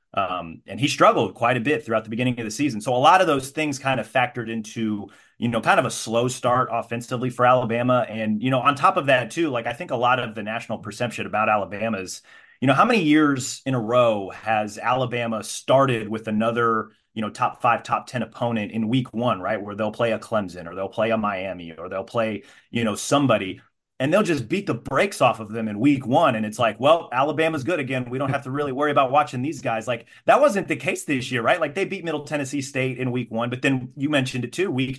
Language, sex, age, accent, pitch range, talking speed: English, male, 30-49, American, 115-135 Hz, 250 wpm